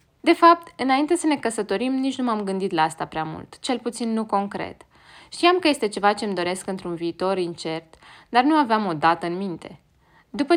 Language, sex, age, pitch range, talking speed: Romanian, female, 20-39, 180-245 Hz, 205 wpm